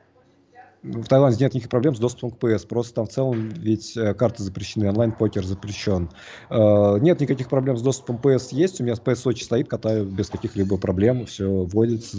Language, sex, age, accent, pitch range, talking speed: Russian, male, 20-39, native, 95-120 Hz, 180 wpm